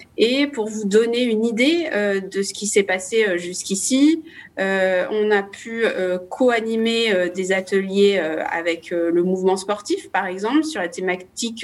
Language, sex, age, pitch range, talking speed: French, female, 30-49, 185-230 Hz, 165 wpm